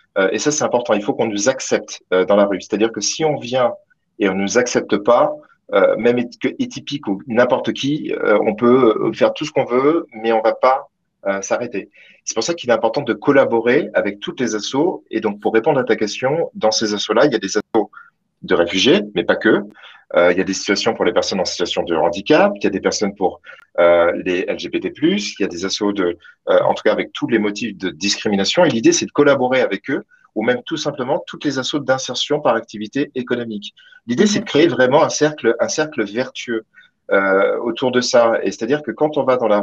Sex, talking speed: male, 230 wpm